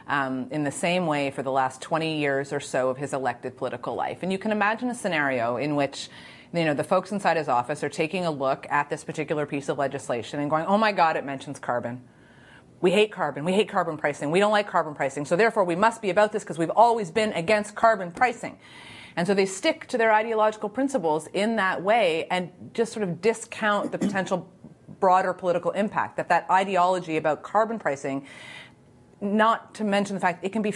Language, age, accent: English, 30-49, American